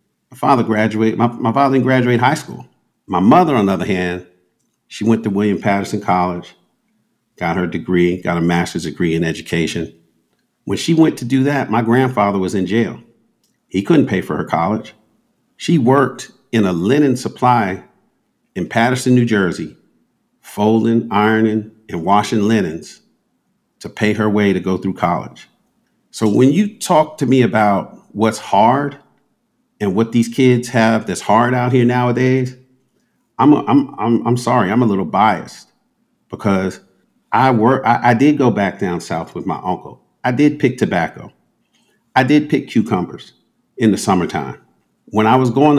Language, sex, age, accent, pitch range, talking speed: English, male, 50-69, American, 95-130 Hz, 170 wpm